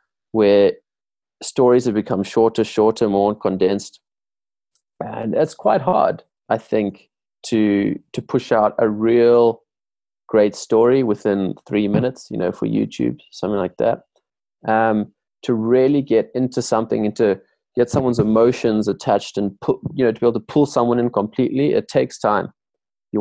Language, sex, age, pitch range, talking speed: English, male, 20-39, 105-120 Hz, 160 wpm